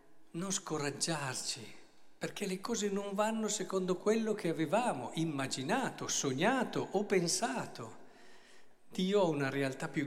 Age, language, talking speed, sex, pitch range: 50-69, Italian, 120 wpm, male, 135-210 Hz